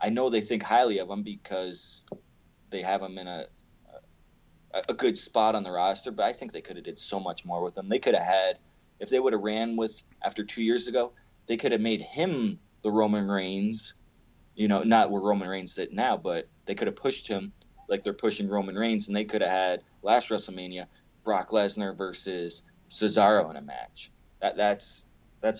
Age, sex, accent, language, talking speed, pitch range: 20-39, male, American, English, 210 wpm, 95-110 Hz